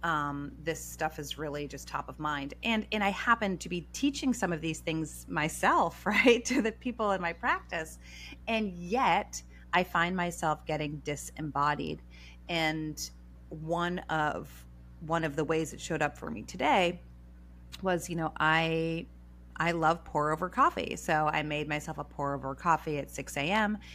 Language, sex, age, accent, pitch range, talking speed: English, female, 30-49, American, 140-175 Hz, 170 wpm